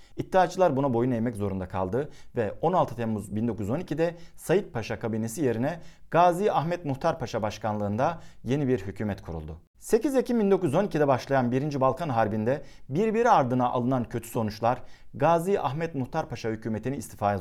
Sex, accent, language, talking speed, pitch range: male, native, Turkish, 140 wpm, 115-170 Hz